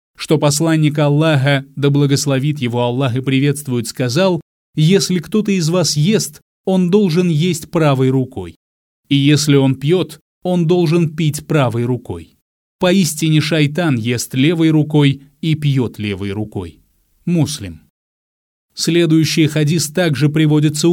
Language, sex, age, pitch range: Russian, male, 30-49, 130-170 Hz